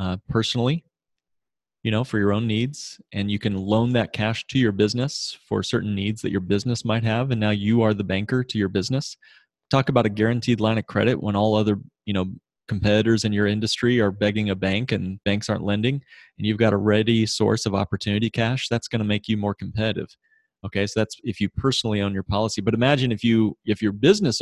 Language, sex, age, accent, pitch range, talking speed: English, male, 30-49, American, 100-120 Hz, 220 wpm